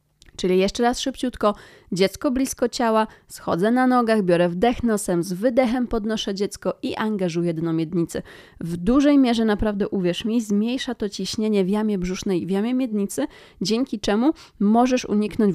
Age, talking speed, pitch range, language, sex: 20-39, 160 wpm, 190-235 Hz, Polish, female